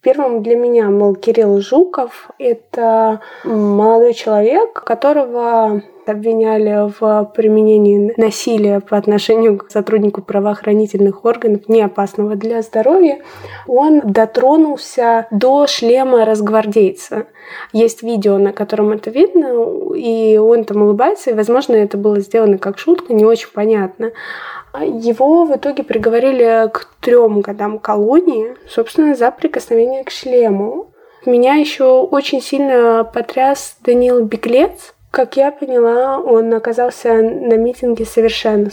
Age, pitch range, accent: 20-39, 215-260 Hz, native